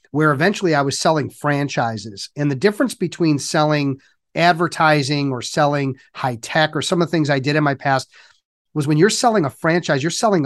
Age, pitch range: 40-59, 140-165 Hz